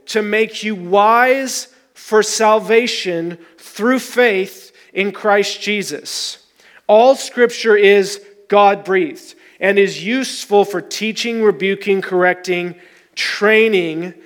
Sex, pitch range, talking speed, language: male, 190-235 Hz, 95 wpm, English